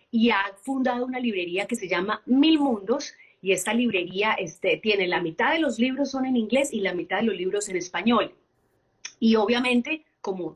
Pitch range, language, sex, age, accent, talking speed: 195-260 Hz, Spanish, female, 30-49, Colombian, 195 wpm